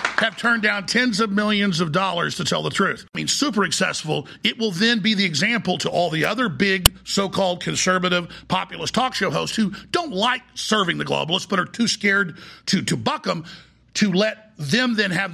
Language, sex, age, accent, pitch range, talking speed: English, male, 50-69, American, 175-215 Hz, 205 wpm